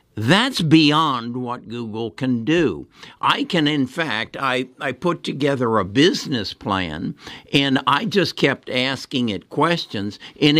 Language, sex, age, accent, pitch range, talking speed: English, male, 60-79, American, 95-130 Hz, 140 wpm